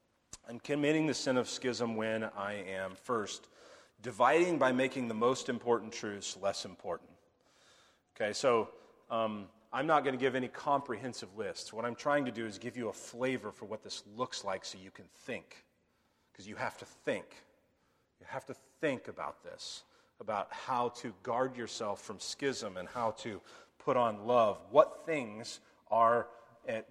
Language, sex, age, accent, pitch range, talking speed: English, male, 30-49, American, 115-140 Hz, 170 wpm